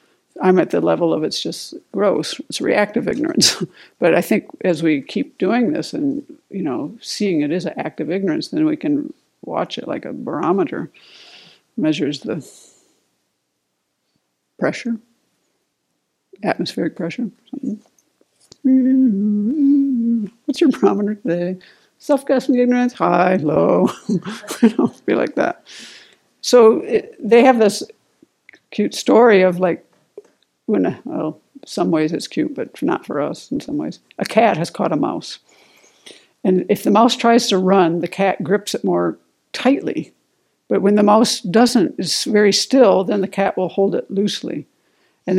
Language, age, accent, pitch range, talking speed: English, 60-79, American, 185-270 Hz, 145 wpm